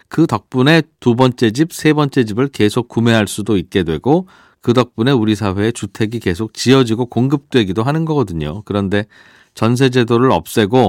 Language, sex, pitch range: Korean, male, 100-135 Hz